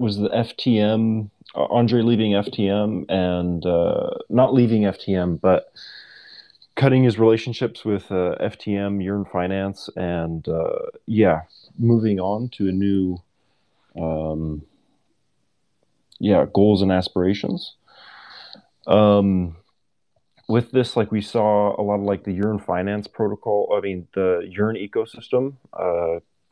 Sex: male